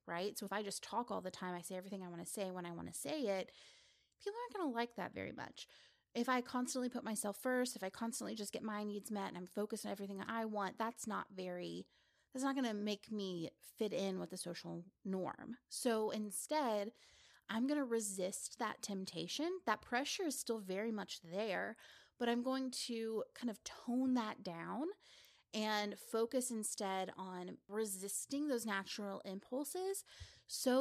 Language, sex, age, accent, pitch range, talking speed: English, female, 30-49, American, 190-250 Hz, 195 wpm